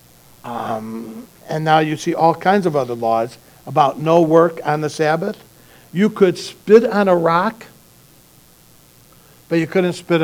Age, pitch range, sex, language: 60-79, 145-185 Hz, male, English